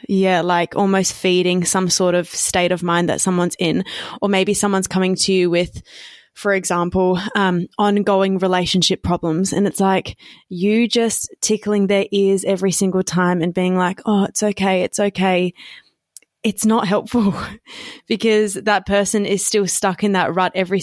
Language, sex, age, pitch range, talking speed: English, female, 20-39, 180-200 Hz, 165 wpm